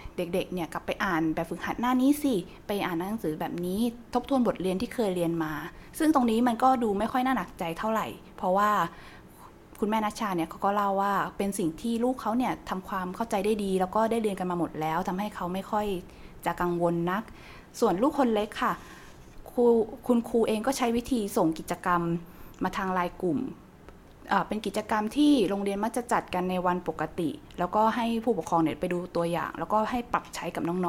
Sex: female